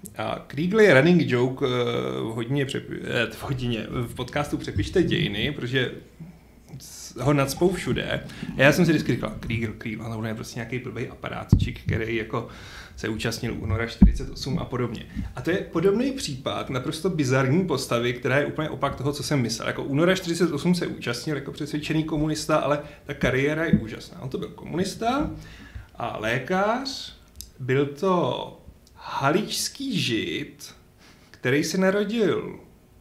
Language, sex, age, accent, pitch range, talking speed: Czech, male, 30-49, native, 120-175 Hz, 155 wpm